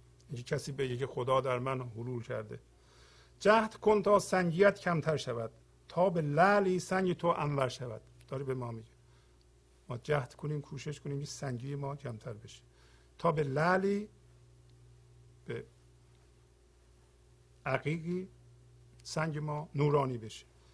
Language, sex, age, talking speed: Persian, male, 50-69, 125 wpm